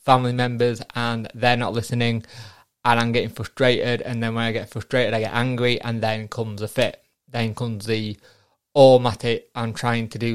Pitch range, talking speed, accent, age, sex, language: 115-130 Hz, 210 wpm, British, 20-39, male, English